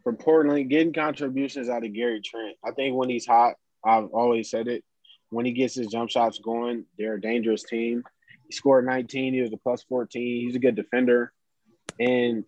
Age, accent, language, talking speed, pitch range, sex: 20-39, American, English, 190 wpm, 110-130 Hz, male